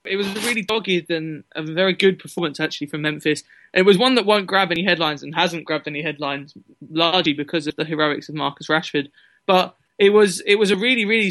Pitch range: 160-195 Hz